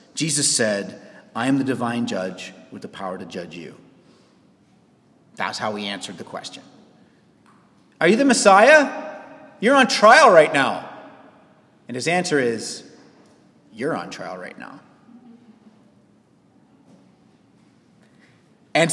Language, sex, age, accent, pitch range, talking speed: English, male, 30-49, American, 195-285 Hz, 120 wpm